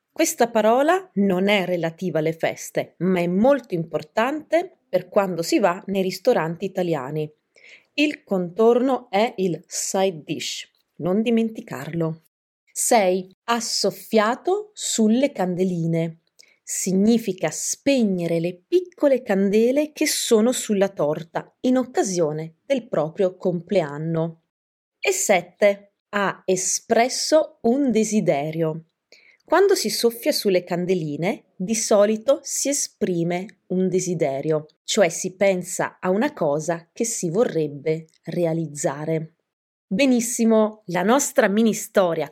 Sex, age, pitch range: female, 30-49, 170-235 Hz